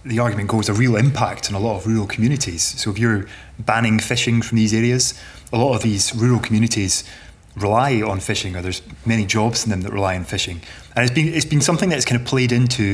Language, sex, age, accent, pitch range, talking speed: English, male, 20-39, British, 100-125 Hz, 225 wpm